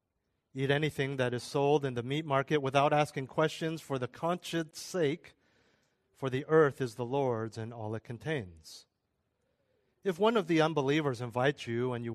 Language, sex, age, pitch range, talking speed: English, male, 40-59, 120-155 Hz, 175 wpm